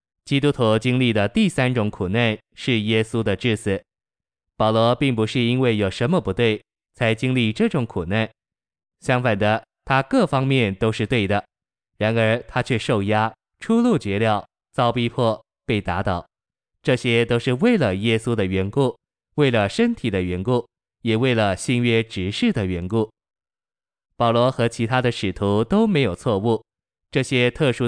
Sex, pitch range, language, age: male, 105-130 Hz, Chinese, 20-39